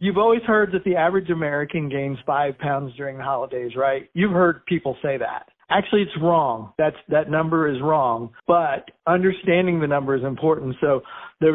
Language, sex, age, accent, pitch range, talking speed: English, male, 50-69, American, 140-180 Hz, 175 wpm